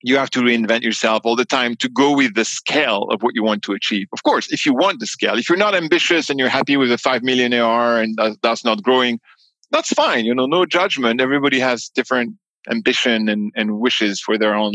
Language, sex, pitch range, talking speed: English, male, 105-135 Hz, 235 wpm